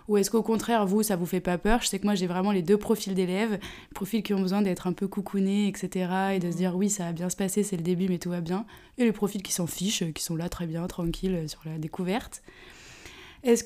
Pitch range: 185-225 Hz